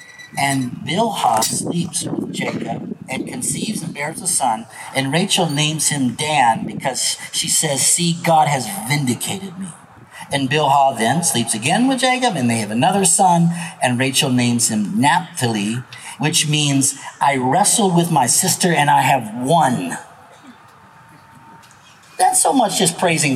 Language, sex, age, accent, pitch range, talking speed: English, male, 50-69, American, 140-185 Hz, 145 wpm